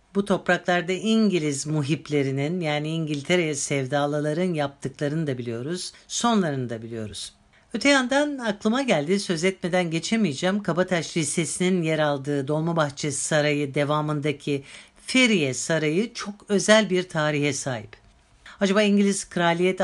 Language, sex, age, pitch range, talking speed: Turkish, female, 60-79, 145-200 Hz, 110 wpm